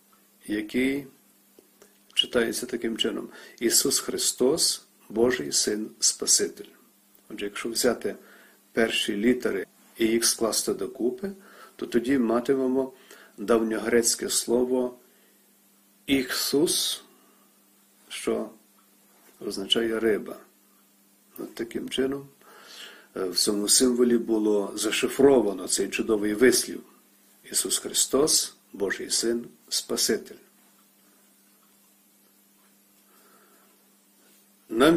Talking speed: 75 wpm